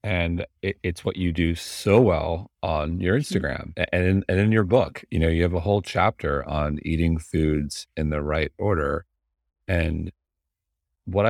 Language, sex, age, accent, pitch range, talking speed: English, male, 40-59, American, 75-90 Hz, 165 wpm